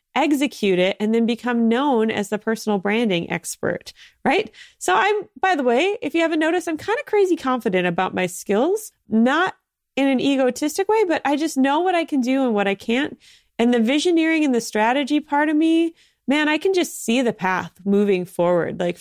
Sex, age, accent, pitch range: female, 30-49, American, 200-290 Hz